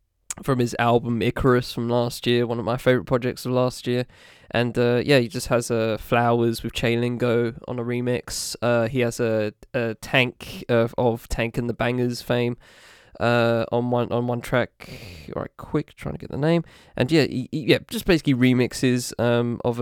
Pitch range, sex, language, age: 115-130 Hz, male, English, 20-39